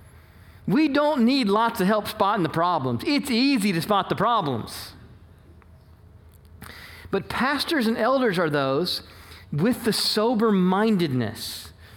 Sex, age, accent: male, 40-59, American